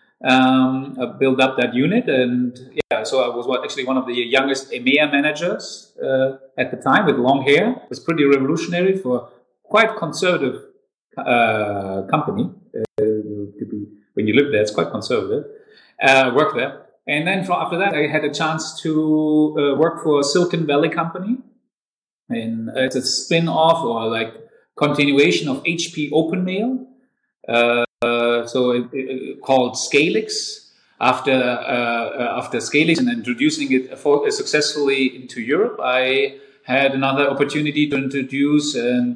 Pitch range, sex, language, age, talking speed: 130-160 Hz, male, English, 30-49, 160 wpm